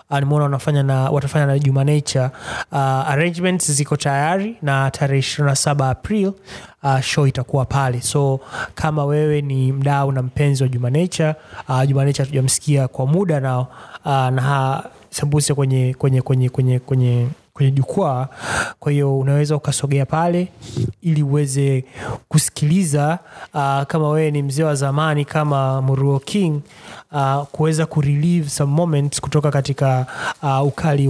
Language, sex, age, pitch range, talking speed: Swahili, male, 20-39, 130-150 Hz, 135 wpm